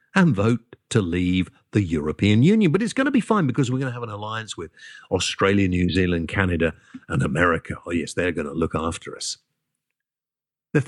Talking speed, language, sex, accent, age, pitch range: 200 wpm, English, male, British, 50-69, 90-140 Hz